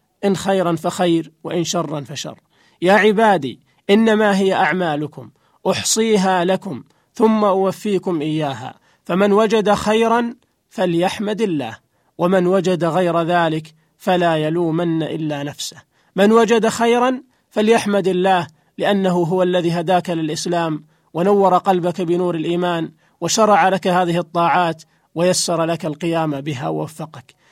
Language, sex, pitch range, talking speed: Arabic, male, 170-205 Hz, 115 wpm